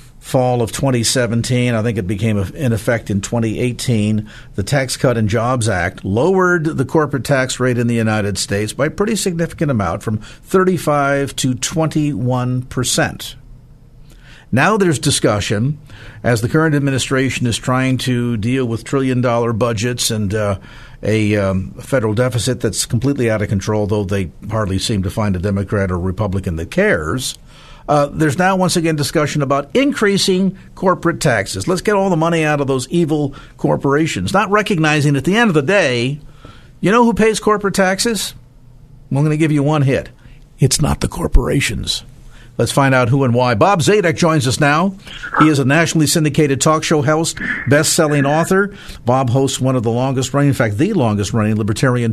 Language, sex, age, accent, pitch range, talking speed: English, male, 50-69, American, 120-150 Hz, 170 wpm